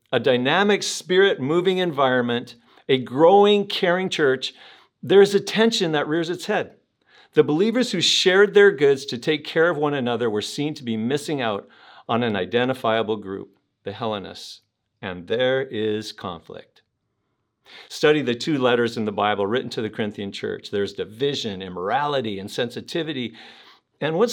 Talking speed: 160 wpm